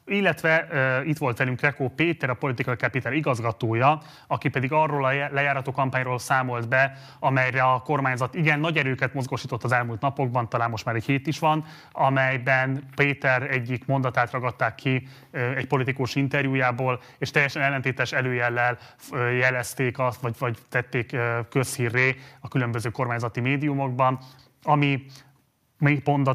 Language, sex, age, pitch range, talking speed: Hungarian, male, 30-49, 125-145 Hz, 145 wpm